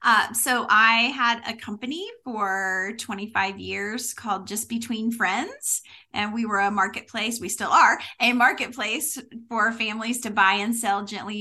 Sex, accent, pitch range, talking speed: female, American, 190-230 Hz, 160 wpm